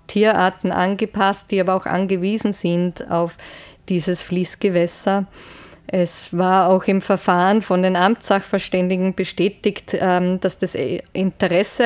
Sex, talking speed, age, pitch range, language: female, 110 wpm, 20-39, 180-200 Hz, German